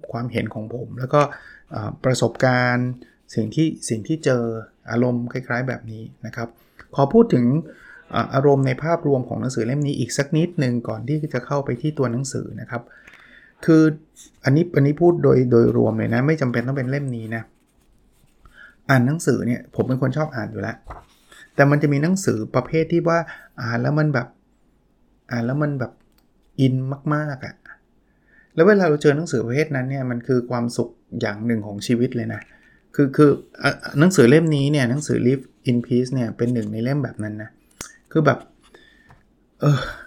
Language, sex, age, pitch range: Thai, male, 20-39, 115-145 Hz